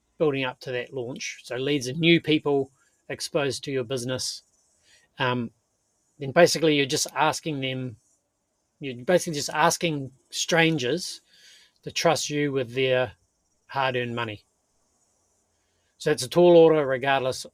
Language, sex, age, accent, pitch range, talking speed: English, male, 30-49, Australian, 125-165 Hz, 135 wpm